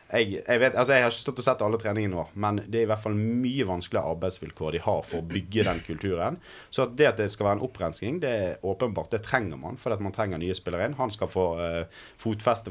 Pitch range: 90-115 Hz